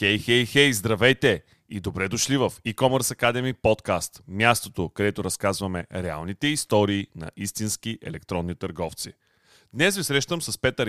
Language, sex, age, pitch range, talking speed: Bulgarian, male, 30-49, 105-140 Hz, 140 wpm